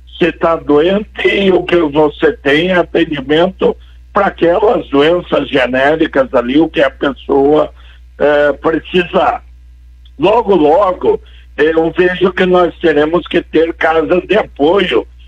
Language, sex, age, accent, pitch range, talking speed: Portuguese, male, 60-79, Brazilian, 140-175 Hz, 125 wpm